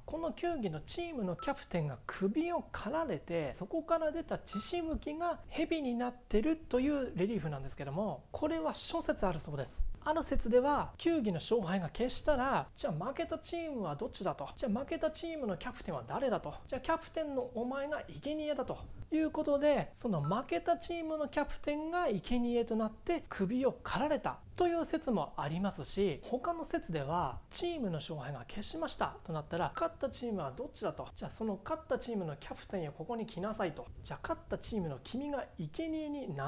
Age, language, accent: 30-49, Japanese, native